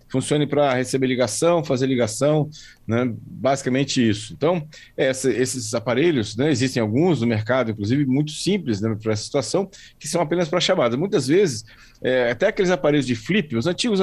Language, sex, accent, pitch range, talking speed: Portuguese, male, Brazilian, 115-155 Hz, 165 wpm